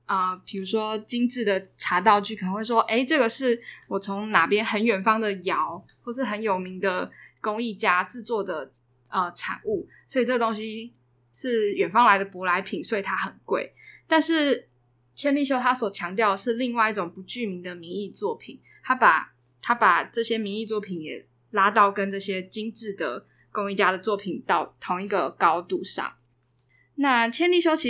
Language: Chinese